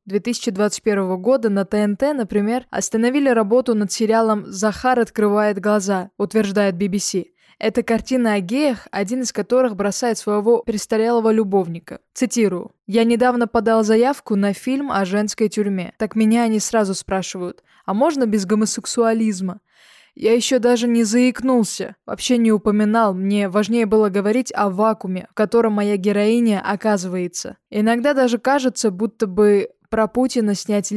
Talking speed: 140 wpm